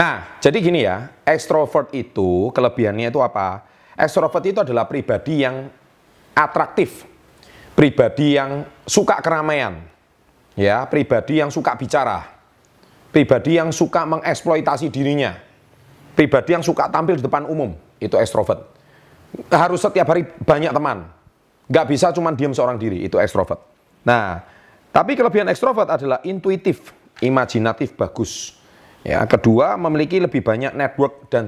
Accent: native